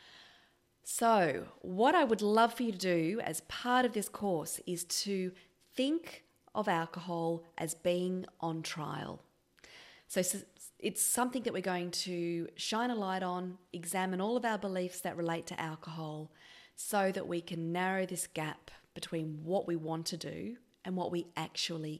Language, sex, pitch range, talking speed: English, female, 165-215 Hz, 165 wpm